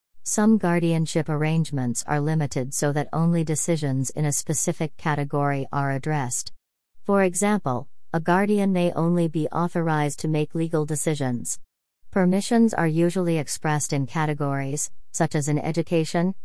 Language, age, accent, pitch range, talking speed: English, 40-59, American, 145-170 Hz, 135 wpm